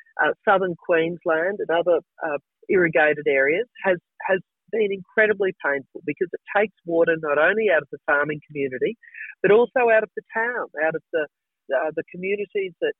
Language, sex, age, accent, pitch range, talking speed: English, female, 50-69, Australian, 175-265 Hz, 170 wpm